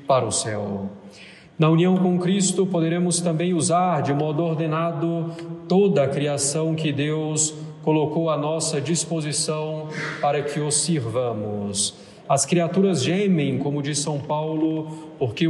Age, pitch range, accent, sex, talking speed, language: 40-59, 145-170 Hz, Brazilian, male, 130 wpm, Portuguese